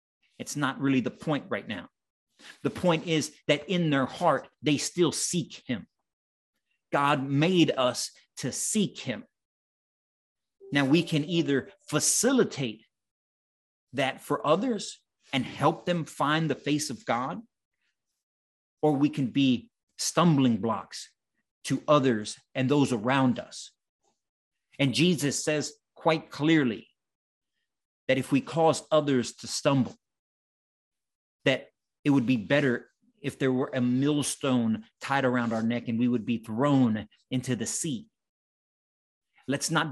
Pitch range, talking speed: 125-155 Hz, 130 wpm